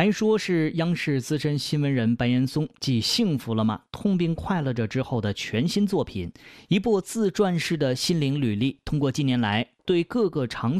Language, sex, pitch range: Chinese, male, 115-175 Hz